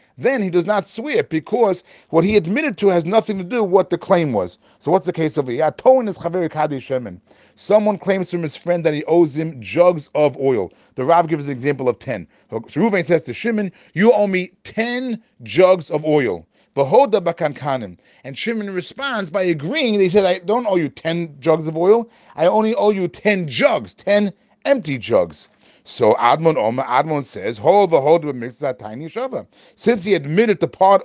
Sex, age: male, 30-49